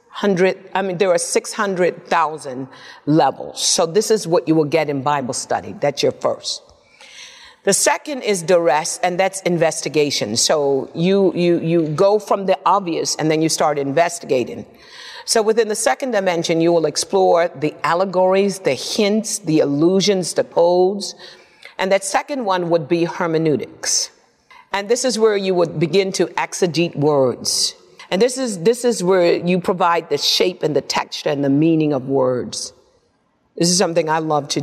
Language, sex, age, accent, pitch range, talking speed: English, female, 50-69, American, 160-205 Hz, 170 wpm